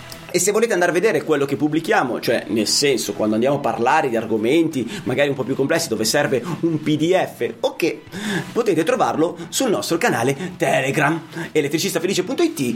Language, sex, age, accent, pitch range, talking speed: Italian, male, 30-49, native, 165-275 Hz, 165 wpm